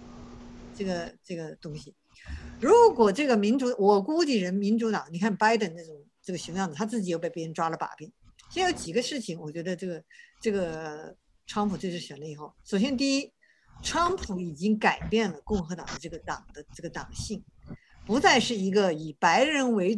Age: 50-69